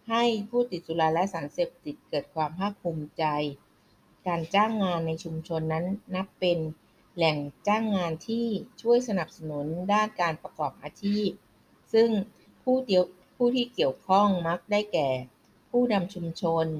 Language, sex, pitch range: Thai, female, 155-195 Hz